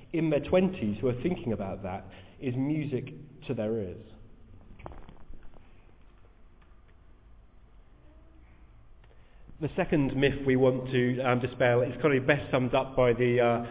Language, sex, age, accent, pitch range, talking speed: English, male, 30-49, British, 110-140 Hz, 125 wpm